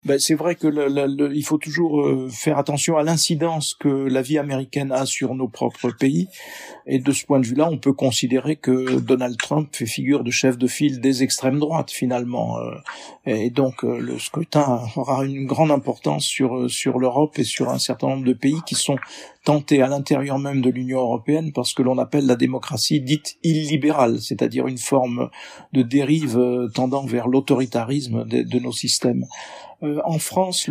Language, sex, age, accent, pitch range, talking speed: French, male, 50-69, French, 130-150 Hz, 185 wpm